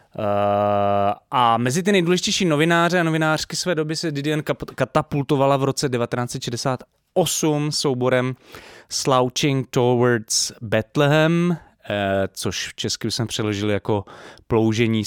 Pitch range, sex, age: 105-135 Hz, male, 20-39